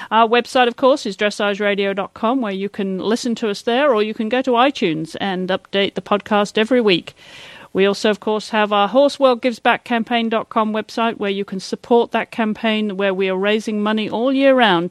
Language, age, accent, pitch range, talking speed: English, 40-59, British, 190-235 Hz, 190 wpm